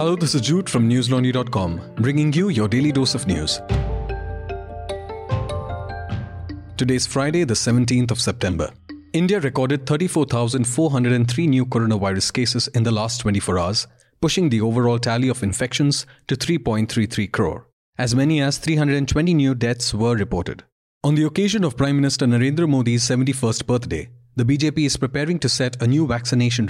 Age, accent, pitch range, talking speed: 30-49, Indian, 110-140 Hz, 150 wpm